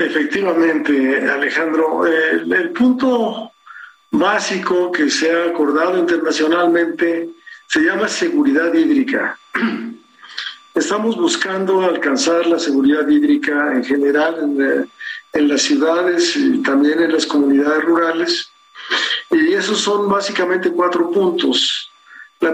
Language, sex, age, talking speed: Spanish, male, 50-69, 105 wpm